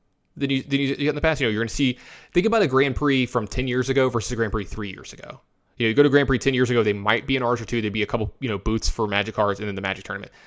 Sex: male